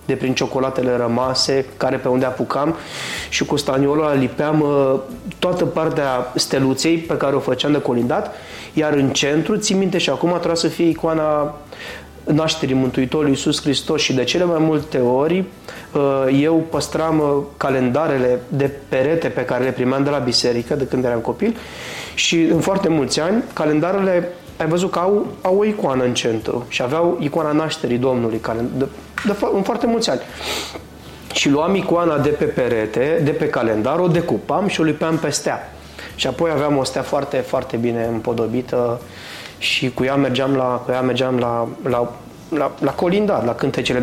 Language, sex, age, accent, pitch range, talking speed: Romanian, male, 20-39, native, 125-165 Hz, 165 wpm